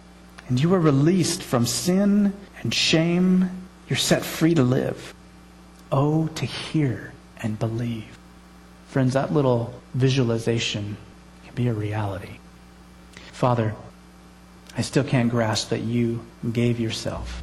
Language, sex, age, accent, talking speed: English, male, 40-59, American, 120 wpm